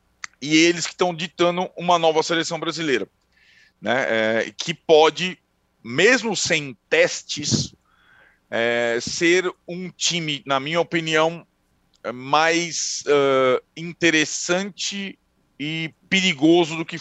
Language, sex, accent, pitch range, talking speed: Portuguese, male, Brazilian, 135-165 Hz, 105 wpm